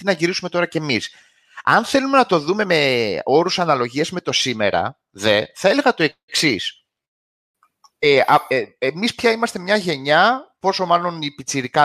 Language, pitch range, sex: Greek, 140-200 Hz, male